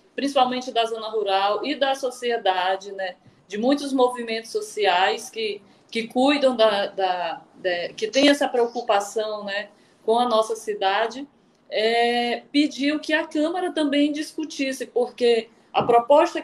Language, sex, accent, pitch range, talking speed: Portuguese, female, Brazilian, 220-285 Hz, 135 wpm